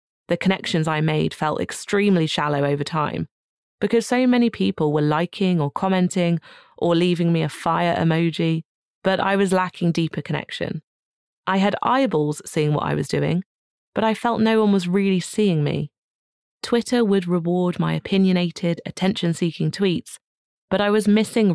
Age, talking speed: 30-49, 160 wpm